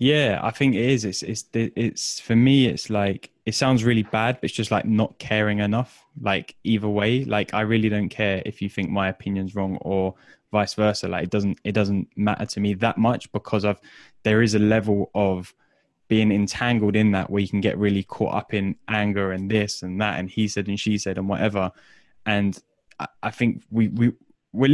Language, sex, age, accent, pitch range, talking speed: English, male, 10-29, British, 100-115 Hz, 220 wpm